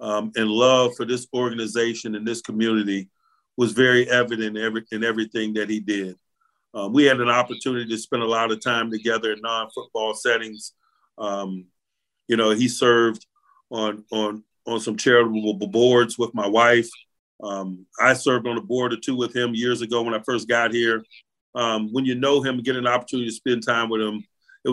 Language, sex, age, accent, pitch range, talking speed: English, male, 40-59, American, 110-120 Hz, 195 wpm